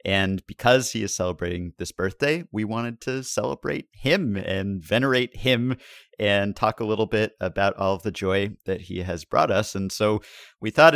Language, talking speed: English, 185 wpm